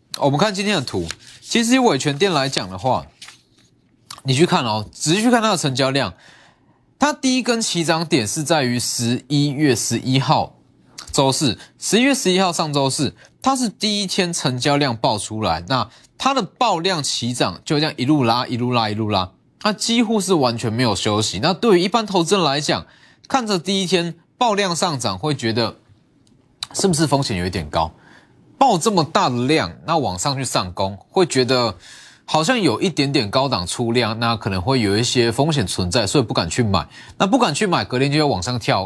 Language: Chinese